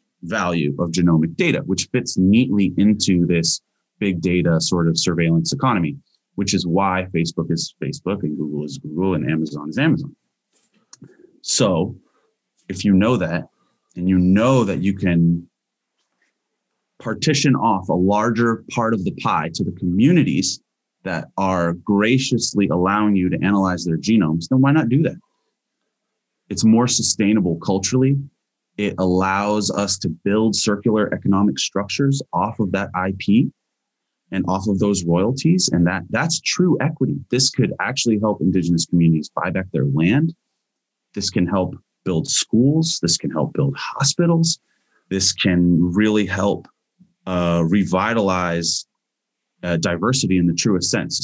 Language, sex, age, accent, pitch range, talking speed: English, male, 30-49, American, 85-110 Hz, 145 wpm